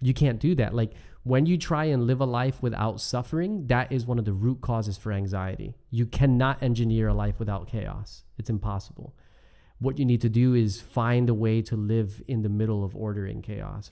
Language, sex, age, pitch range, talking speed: English, male, 30-49, 105-130 Hz, 215 wpm